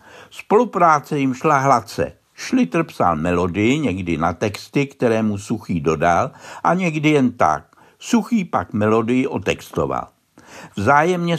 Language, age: Czech, 60-79